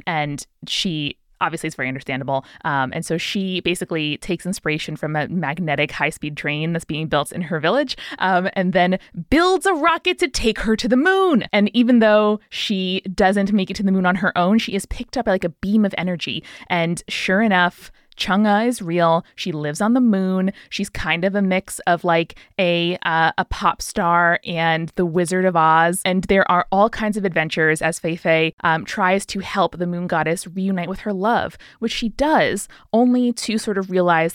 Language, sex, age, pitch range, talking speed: English, female, 20-39, 165-205 Hz, 205 wpm